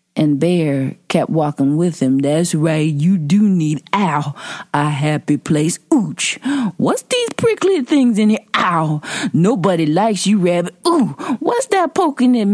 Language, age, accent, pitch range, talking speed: English, 40-59, American, 165-270 Hz, 155 wpm